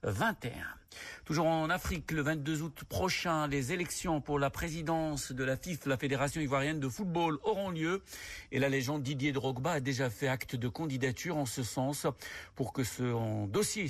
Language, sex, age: Arabic, male, 60-79